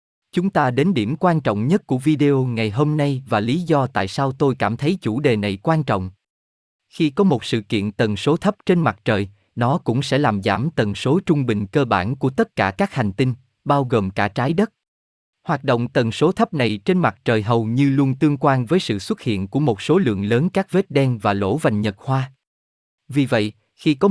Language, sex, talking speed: Vietnamese, male, 230 wpm